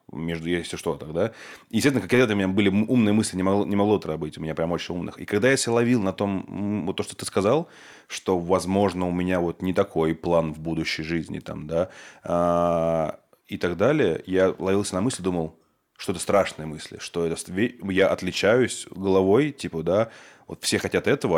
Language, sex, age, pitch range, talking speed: Russian, male, 20-39, 85-100 Hz, 200 wpm